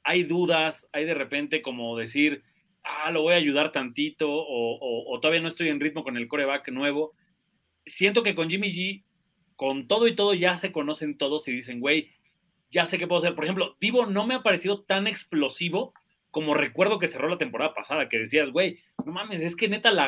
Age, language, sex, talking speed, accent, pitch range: 30-49, Spanish, male, 210 wpm, Mexican, 150-210 Hz